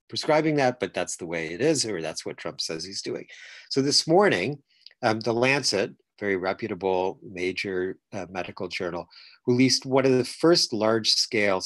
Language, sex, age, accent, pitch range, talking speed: English, male, 50-69, American, 95-130 Hz, 170 wpm